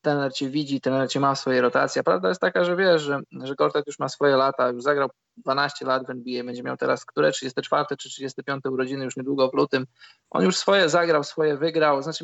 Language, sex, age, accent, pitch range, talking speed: Polish, male, 20-39, native, 135-155 Hz, 220 wpm